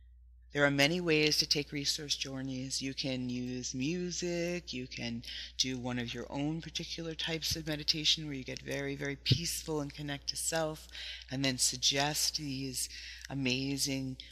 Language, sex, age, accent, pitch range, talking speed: English, female, 40-59, American, 120-145 Hz, 160 wpm